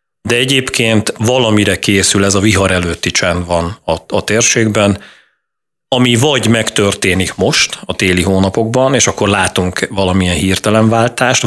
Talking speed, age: 135 wpm, 30-49